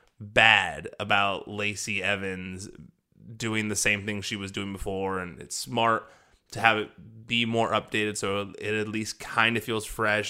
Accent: American